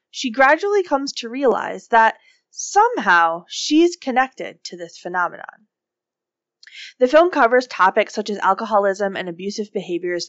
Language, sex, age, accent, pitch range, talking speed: English, female, 20-39, American, 185-255 Hz, 130 wpm